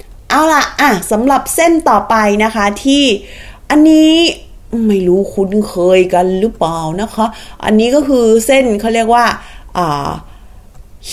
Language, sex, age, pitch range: Thai, female, 20-39, 195-265 Hz